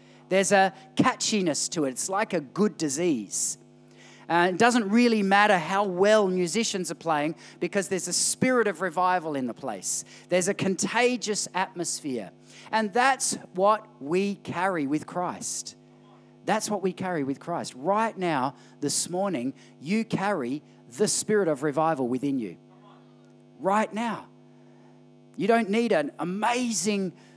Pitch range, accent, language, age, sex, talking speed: 160-220 Hz, Australian, English, 40-59, male, 145 wpm